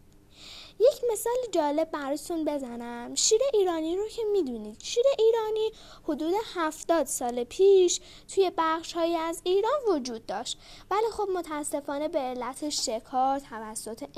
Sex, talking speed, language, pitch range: female, 125 wpm, Persian, 255-380 Hz